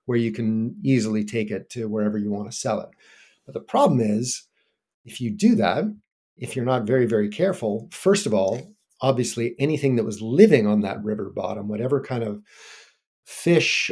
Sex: male